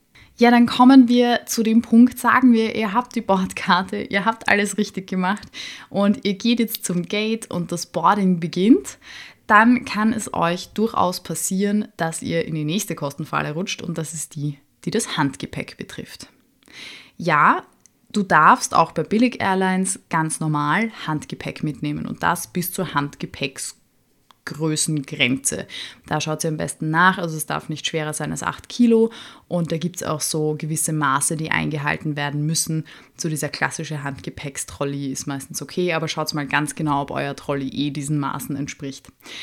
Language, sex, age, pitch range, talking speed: German, female, 20-39, 155-200 Hz, 170 wpm